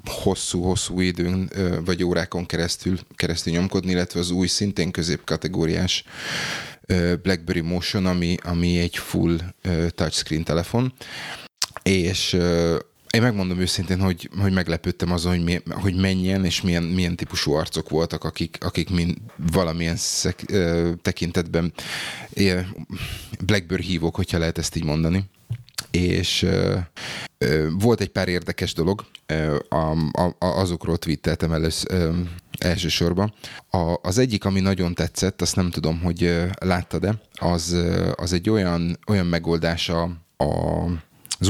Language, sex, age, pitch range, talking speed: Hungarian, male, 30-49, 85-95 Hz, 120 wpm